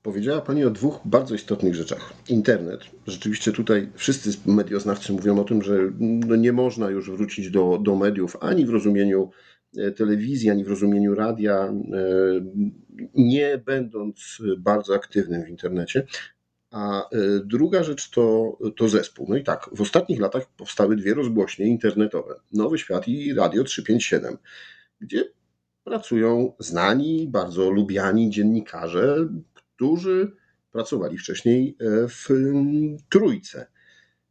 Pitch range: 95-115 Hz